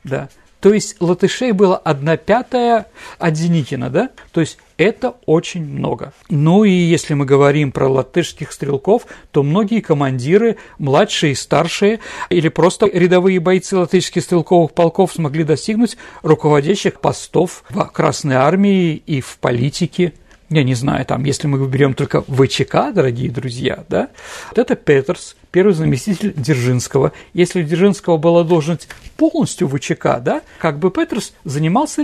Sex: male